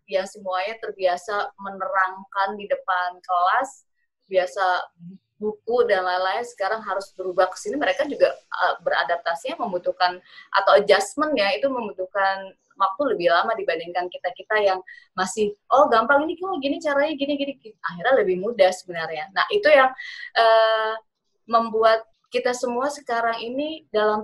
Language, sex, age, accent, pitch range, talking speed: Indonesian, female, 20-39, native, 195-250 Hz, 135 wpm